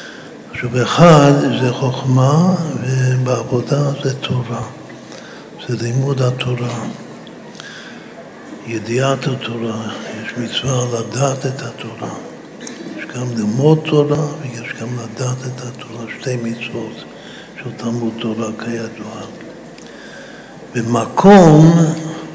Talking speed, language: 85 wpm, Hebrew